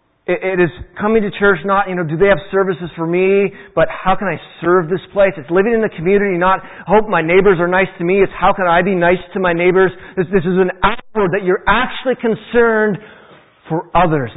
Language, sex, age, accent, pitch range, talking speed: English, male, 30-49, American, 160-205 Hz, 225 wpm